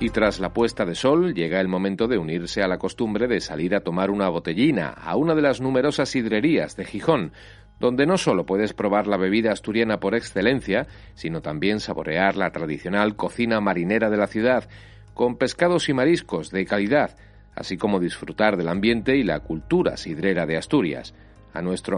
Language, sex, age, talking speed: Spanish, male, 40-59, 185 wpm